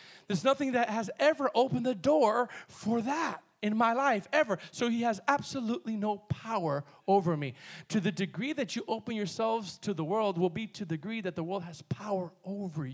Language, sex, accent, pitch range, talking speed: English, male, American, 155-210 Hz, 200 wpm